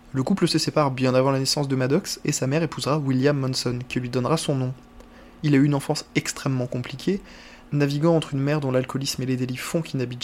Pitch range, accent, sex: 130-160 Hz, French, male